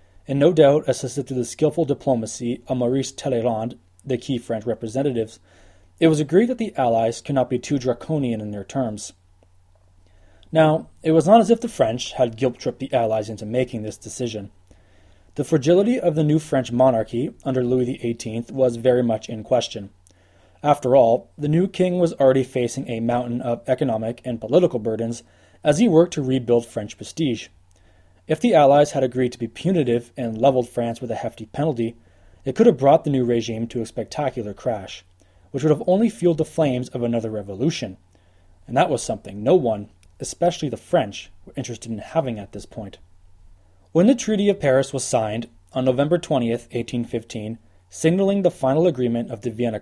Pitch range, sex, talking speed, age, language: 105-140 Hz, male, 180 wpm, 20-39, English